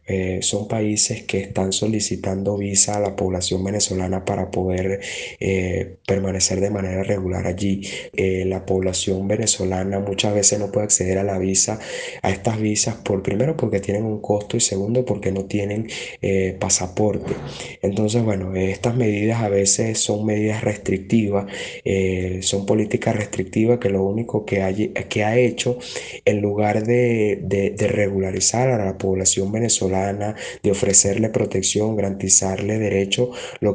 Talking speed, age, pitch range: 150 wpm, 20-39, 95-105 Hz